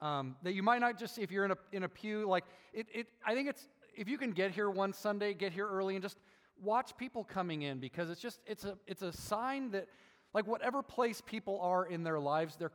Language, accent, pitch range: English, American, 160-210 Hz